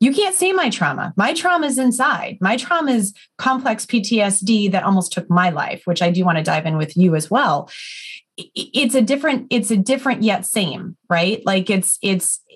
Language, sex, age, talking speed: English, female, 30-49, 200 wpm